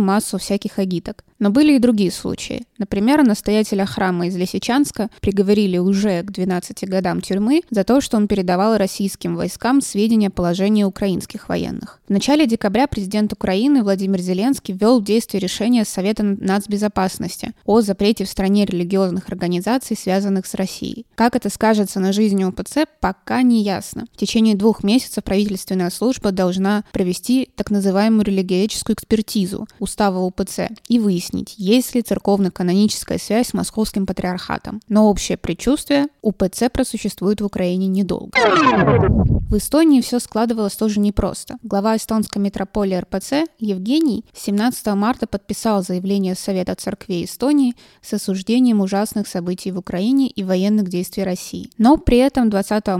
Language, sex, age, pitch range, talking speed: Russian, female, 20-39, 195-235 Hz, 140 wpm